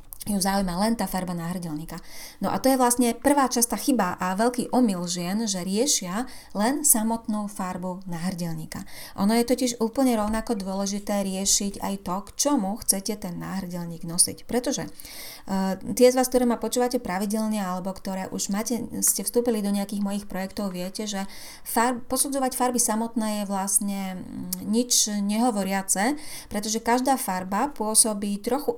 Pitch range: 185-235 Hz